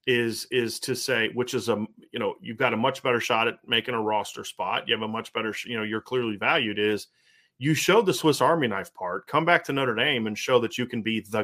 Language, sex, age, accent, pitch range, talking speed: English, male, 30-49, American, 115-135 Hz, 260 wpm